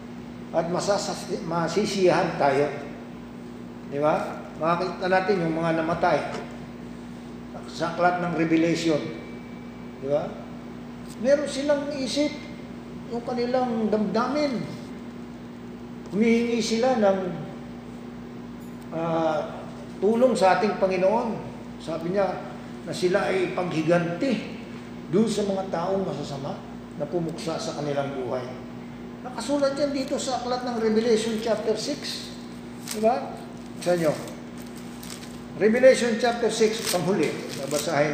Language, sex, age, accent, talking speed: English, male, 50-69, Filipino, 100 wpm